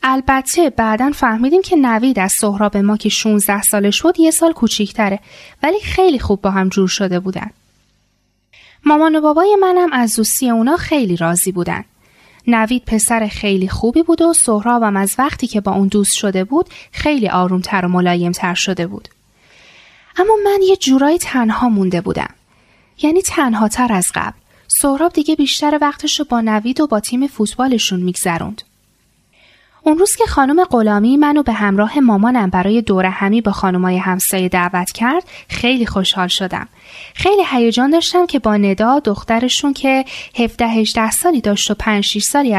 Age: 10-29